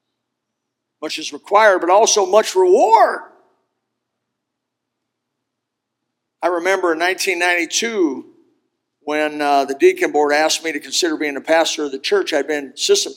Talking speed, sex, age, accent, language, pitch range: 130 wpm, male, 50-69, American, English, 140-185 Hz